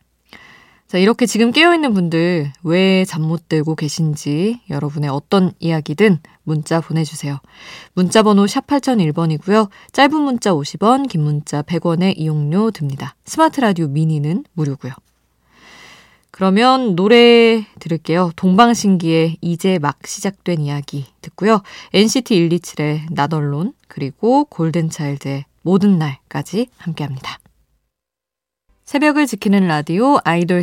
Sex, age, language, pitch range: female, 20-39, Korean, 150-220 Hz